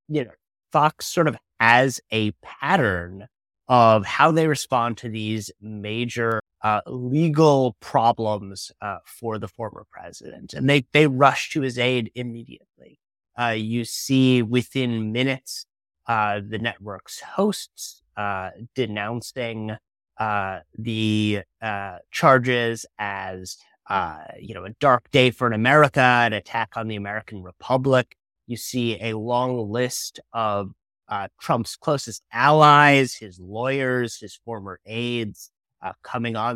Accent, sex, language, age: American, male, English, 30-49